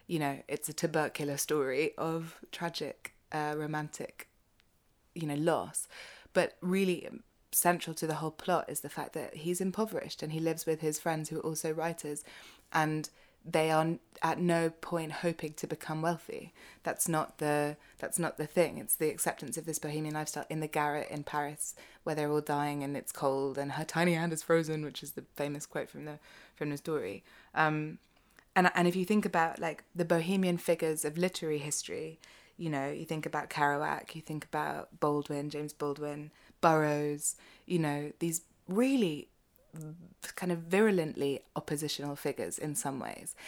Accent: British